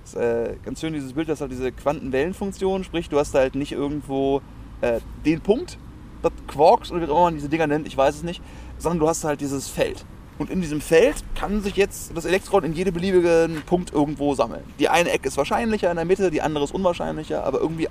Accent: German